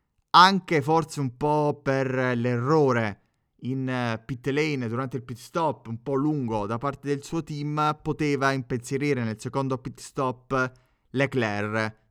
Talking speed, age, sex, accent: 140 wpm, 20-39, male, native